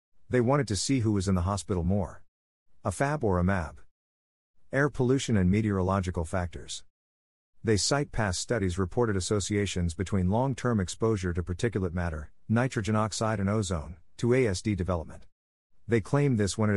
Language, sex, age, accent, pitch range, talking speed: English, male, 50-69, American, 90-110 Hz, 155 wpm